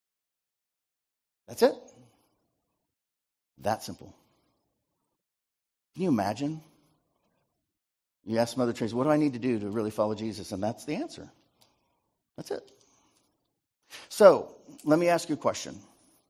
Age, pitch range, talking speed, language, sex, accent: 50-69, 105-135 Hz, 125 wpm, English, male, American